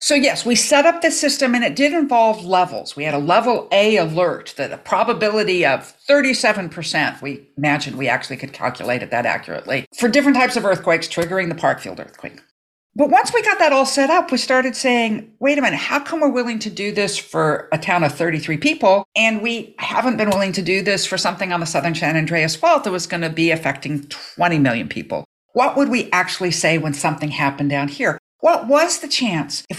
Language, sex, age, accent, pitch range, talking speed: English, female, 50-69, American, 155-240 Hz, 215 wpm